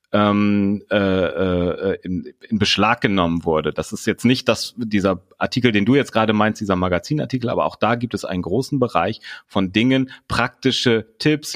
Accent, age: German, 30-49